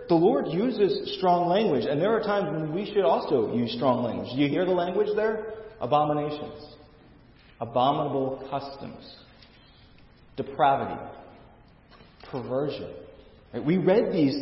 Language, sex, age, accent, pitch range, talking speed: English, male, 40-59, American, 120-175 Hz, 125 wpm